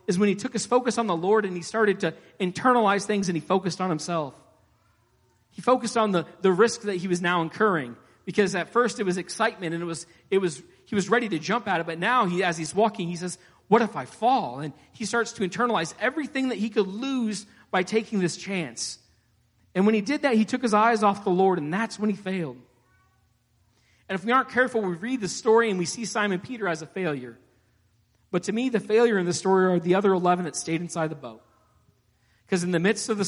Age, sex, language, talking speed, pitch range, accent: 40-59, male, English, 240 wpm, 155-205 Hz, American